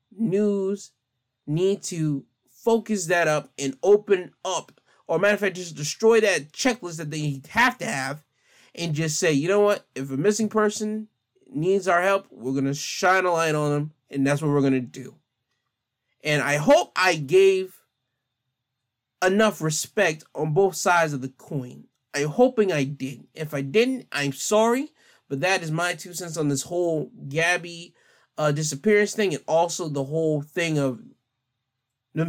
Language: English